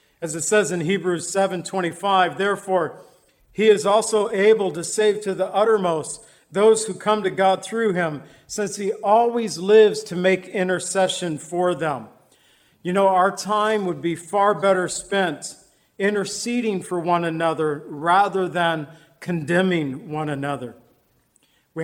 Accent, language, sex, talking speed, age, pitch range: American, English, male, 145 wpm, 50-69, 165-200 Hz